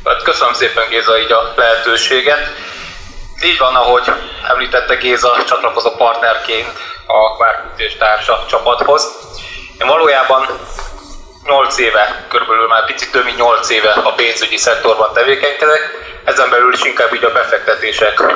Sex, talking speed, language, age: male, 125 wpm, Hungarian, 20-39